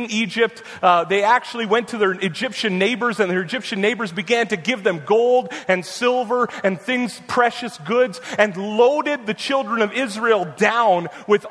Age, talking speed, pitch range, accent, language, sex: 30-49, 165 wpm, 200-250 Hz, American, English, male